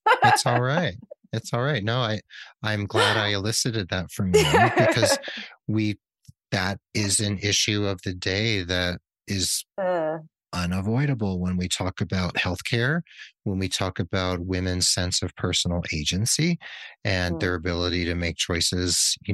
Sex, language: male, English